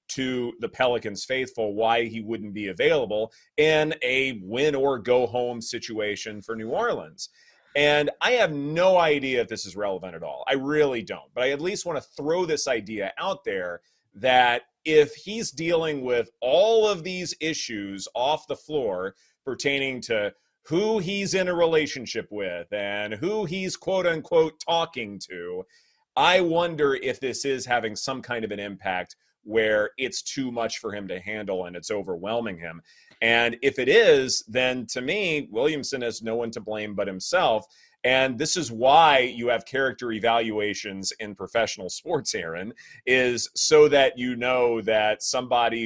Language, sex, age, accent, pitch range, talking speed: English, male, 30-49, American, 110-155 Hz, 165 wpm